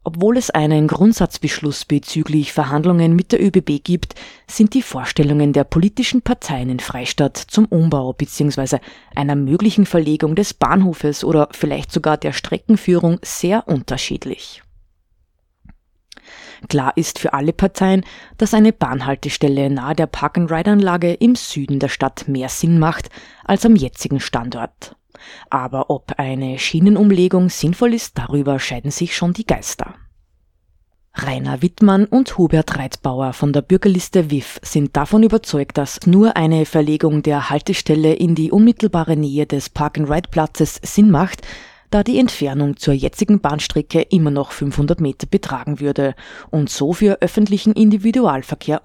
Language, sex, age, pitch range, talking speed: German, female, 20-39, 145-185 Hz, 135 wpm